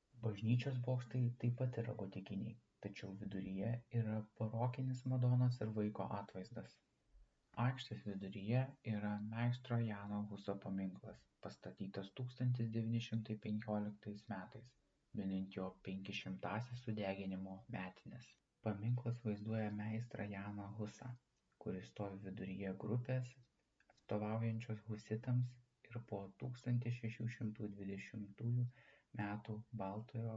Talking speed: 90 wpm